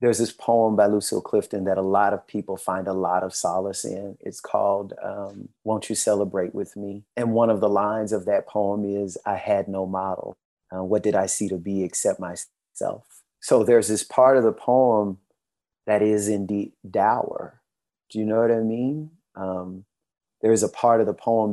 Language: English